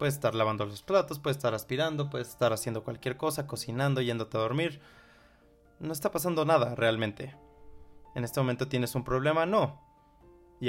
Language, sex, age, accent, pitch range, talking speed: Spanish, male, 20-39, Mexican, 115-145 Hz, 170 wpm